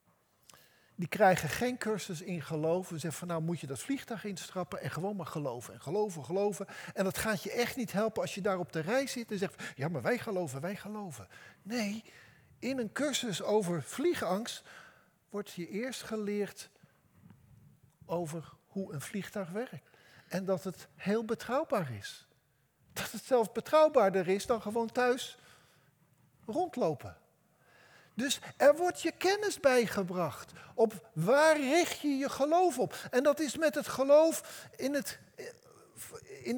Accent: Dutch